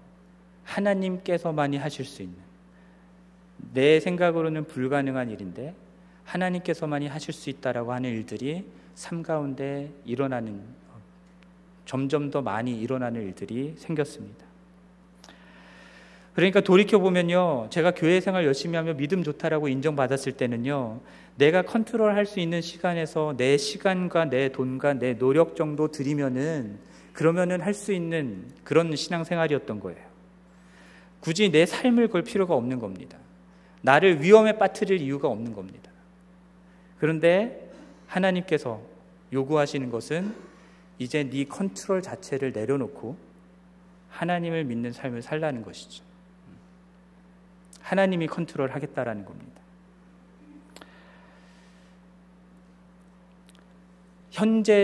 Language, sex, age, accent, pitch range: Korean, male, 40-59, native, 130-180 Hz